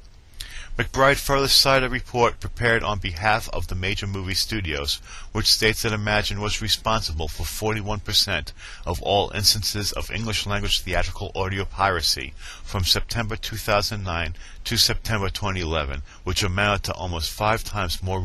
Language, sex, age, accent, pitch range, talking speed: English, male, 40-59, American, 85-105 Hz, 140 wpm